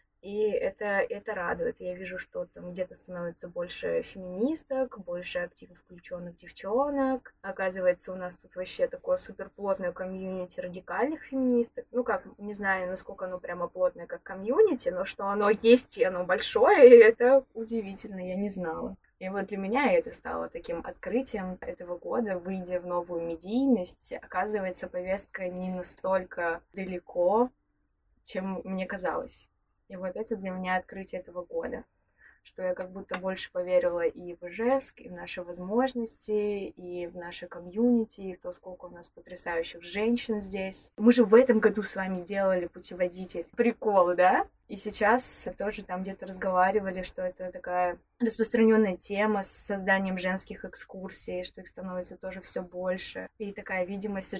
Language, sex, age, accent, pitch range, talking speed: Russian, female, 20-39, native, 180-230 Hz, 155 wpm